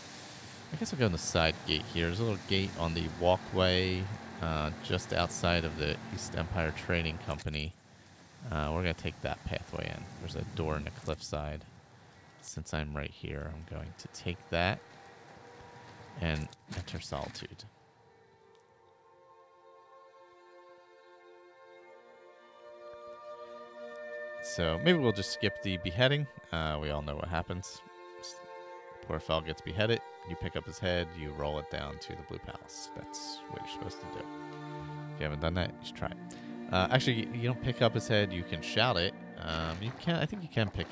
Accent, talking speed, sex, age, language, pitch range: American, 170 wpm, male, 30-49, English, 80-105 Hz